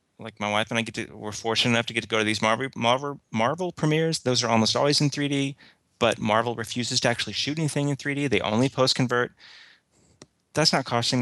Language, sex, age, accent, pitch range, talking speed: English, male, 30-49, American, 110-145 Hz, 220 wpm